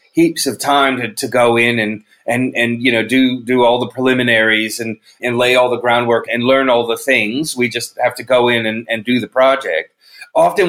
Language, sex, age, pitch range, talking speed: English, male, 30-49, 120-160 Hz, 225 wpm